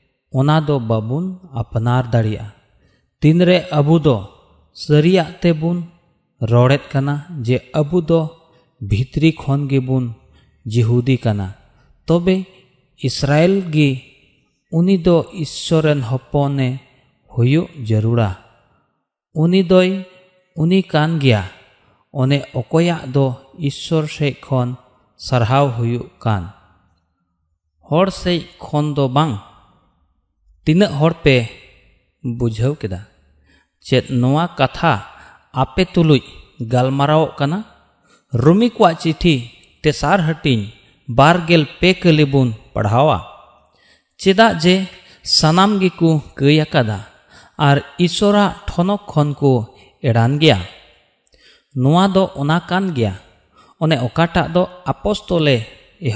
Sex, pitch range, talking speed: male, 120-165 Hz, 30 wpm